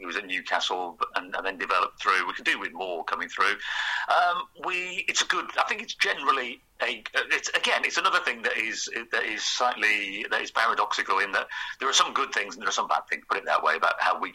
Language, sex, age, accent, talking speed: English, male, 40-59, British, 245 wpm